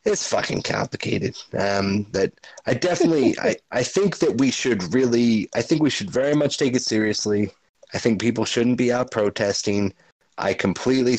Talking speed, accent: 170 wpm, American